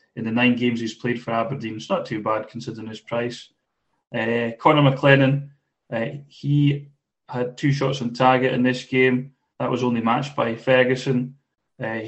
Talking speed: 175 wpm